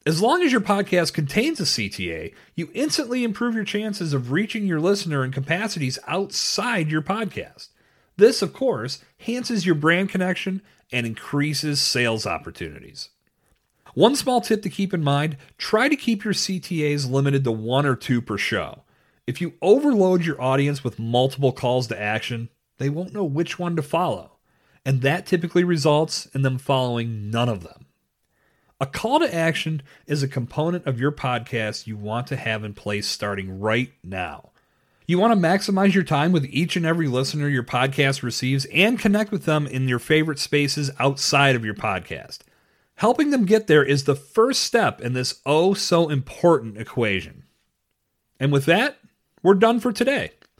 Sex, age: male, 40-59